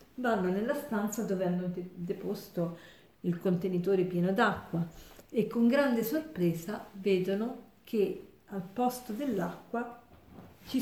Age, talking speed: 50-69, 110 wpm